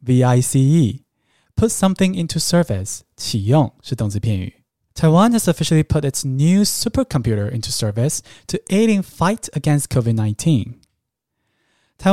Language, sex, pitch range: Chinese, male, 125-185 Hz